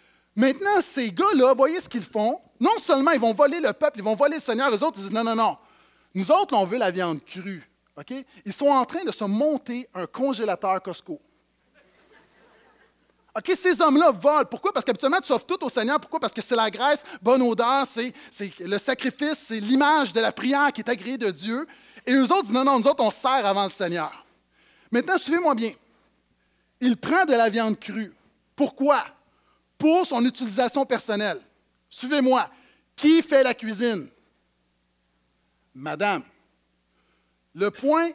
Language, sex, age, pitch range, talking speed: French, male, 30-49, 200-290 Hz, 180 wpm